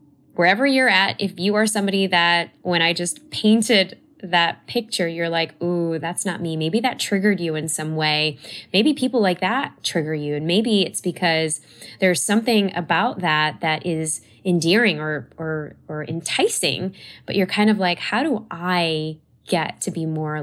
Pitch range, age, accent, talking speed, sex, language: 155-205 Hz, 10-29, American, 175 wpm, female, English